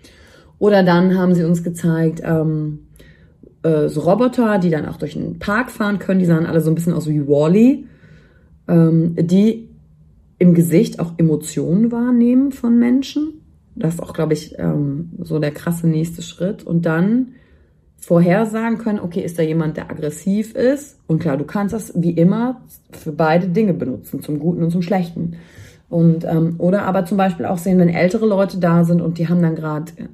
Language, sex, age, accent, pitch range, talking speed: German, female, 30-49, German, 160-190 Hz, 185 wpm